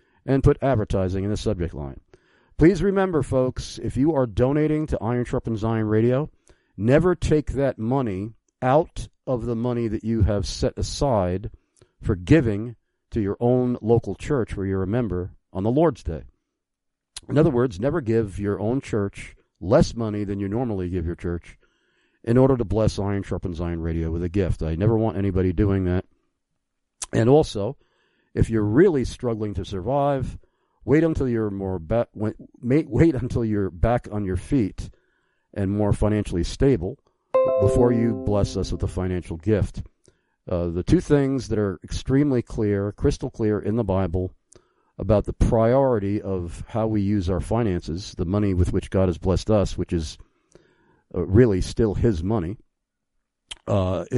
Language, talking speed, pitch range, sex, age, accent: English, 170 wpm, 95-125 Hz, male, 50-69, American